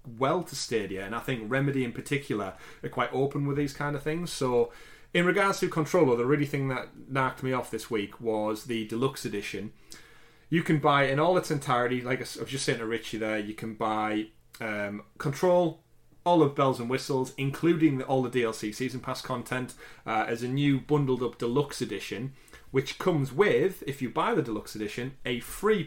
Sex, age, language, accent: male, 30-49, English, British